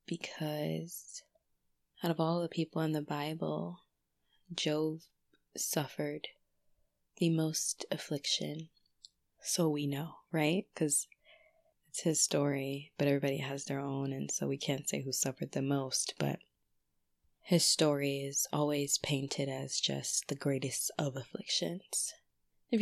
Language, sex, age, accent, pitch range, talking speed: English, female, 20-39, American, 140-170 Hz, 130 wpm